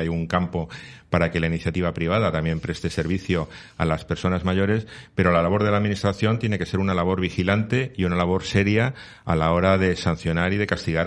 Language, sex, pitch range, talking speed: Spanish, male, 85-100 Hz, 210 wpm